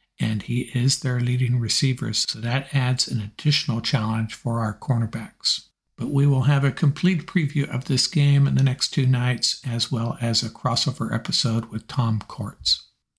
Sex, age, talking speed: male, 60-79, 180 wpm